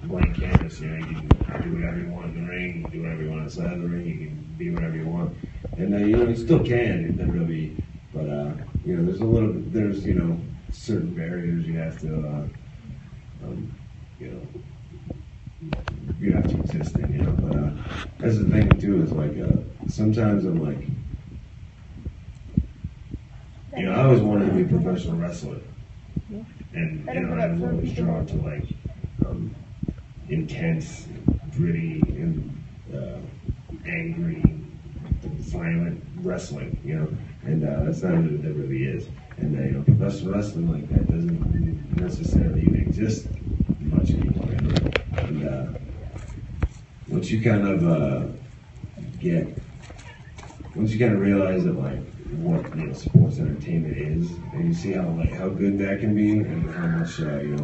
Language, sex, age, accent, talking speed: English, male, 30-49, American, 170 wpm